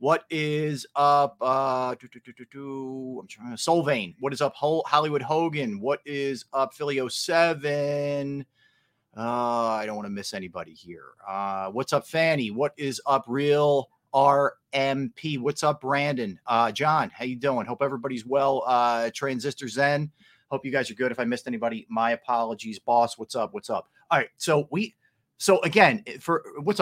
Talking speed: 155 wpm